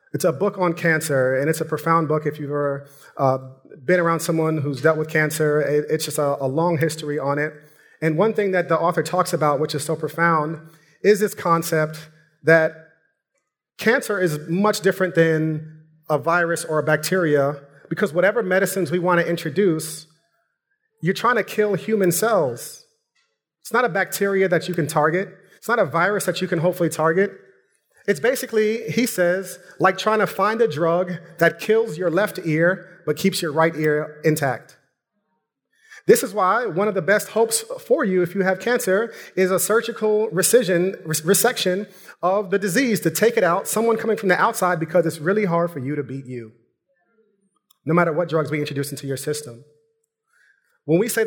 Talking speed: 185 wpm